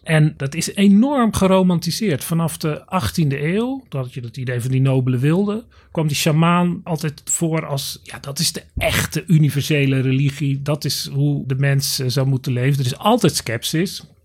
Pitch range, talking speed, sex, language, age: 135-175 Hz, 190 wpm, male, Dutch, 40-59